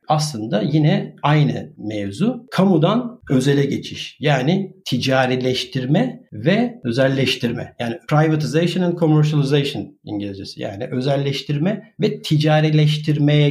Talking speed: 90 wpm